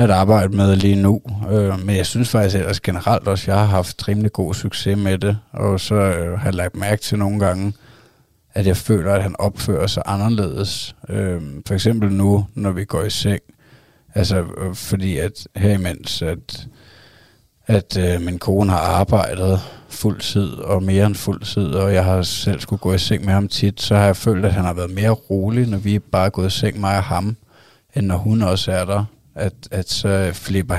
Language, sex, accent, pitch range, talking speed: Danish, male, native, 95-105 Hz, 195 wpm